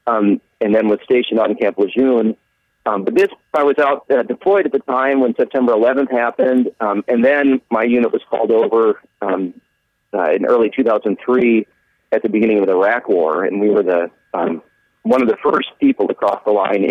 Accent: American